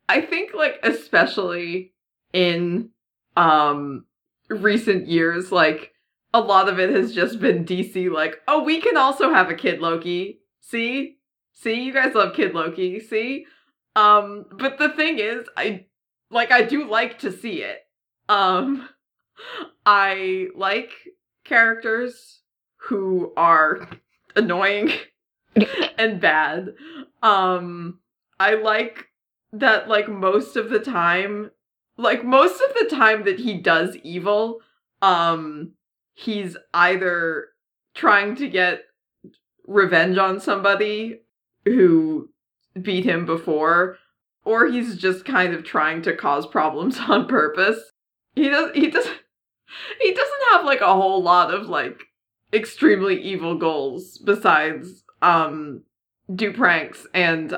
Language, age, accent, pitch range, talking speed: English, 30-49, American, 180-245 Hz, 125 wpm